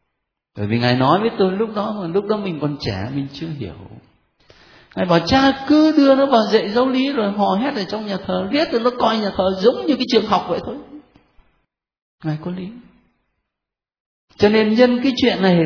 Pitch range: 160-235 Hz